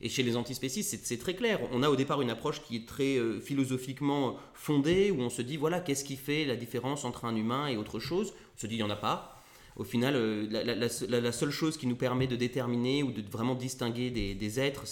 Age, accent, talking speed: 30-49, French, 260 wpm